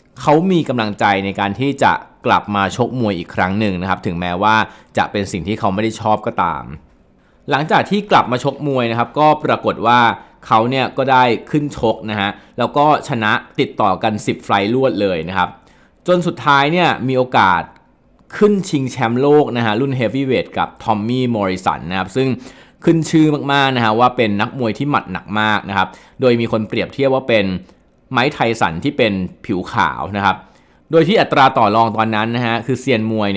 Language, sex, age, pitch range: Thai, male, 20-39, 105-135 Hz